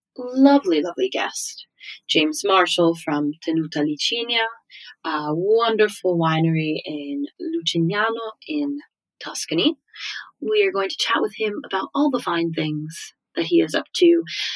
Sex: female